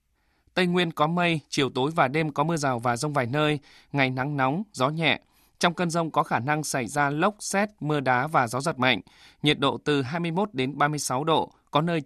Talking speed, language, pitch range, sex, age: 225 wpm, Vietnamese, 135-160 Hz, male, 20-39